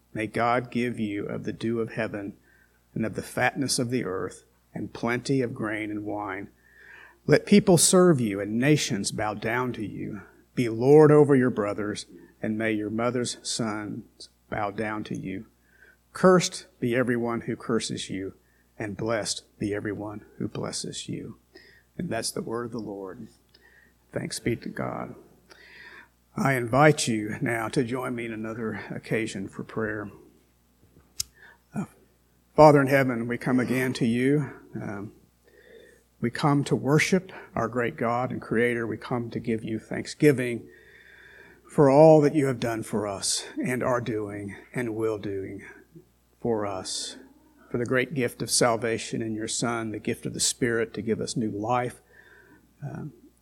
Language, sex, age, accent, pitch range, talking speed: English, male, 50-69, American, 105-130 Hz, 160 wpm